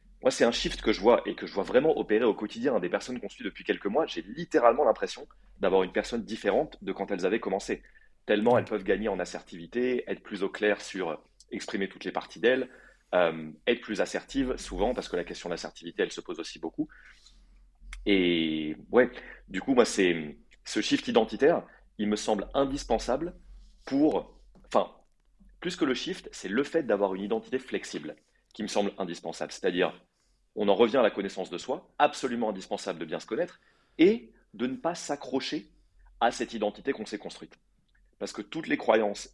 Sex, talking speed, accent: male, 195 wpm, French